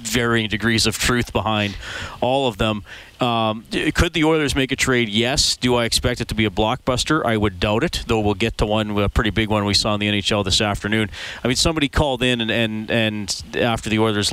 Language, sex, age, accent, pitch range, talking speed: English, male, 40-59, American, 105-125 Hz, 230 wpm